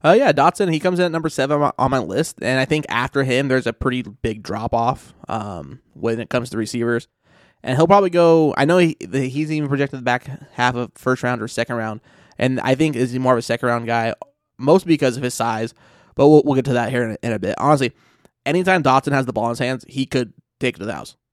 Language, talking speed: English, 255 wpm